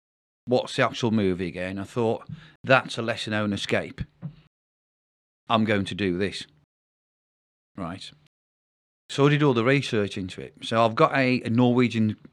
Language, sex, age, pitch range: English, male, 40-59, 95-125 Hz